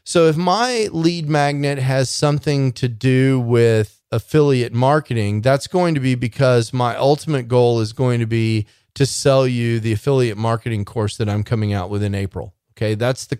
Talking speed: 185 wpm